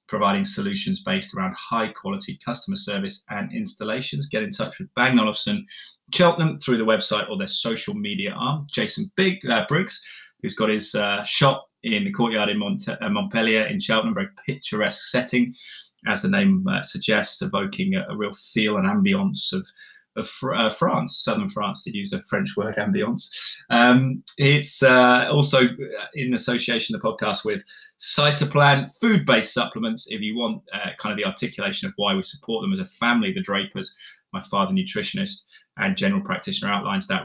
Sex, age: male, 20-39